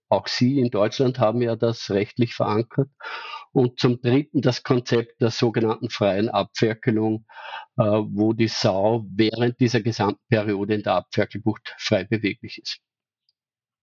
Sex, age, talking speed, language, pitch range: male, 50-69, 135 wpm, German, 115-145 Hz